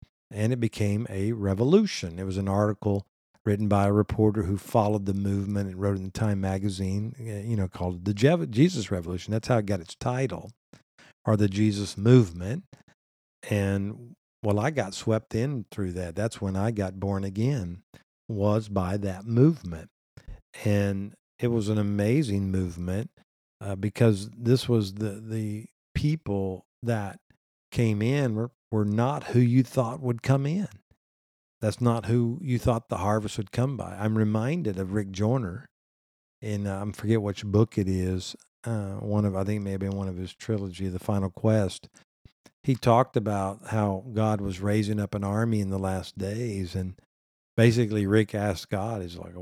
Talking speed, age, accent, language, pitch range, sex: 170 wpm, 50-69, American, English, 100-115 Hz, male